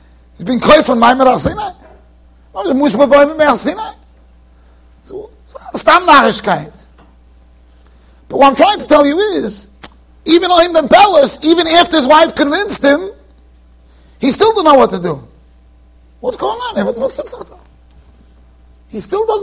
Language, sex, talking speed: English, male, 100 wpm